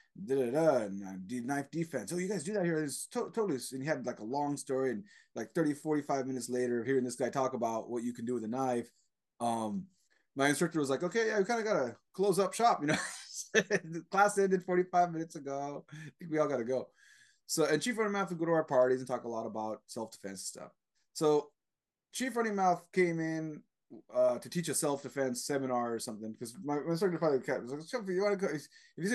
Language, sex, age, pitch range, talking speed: English, male, 20-39, 135-180 Hz, 225 wpm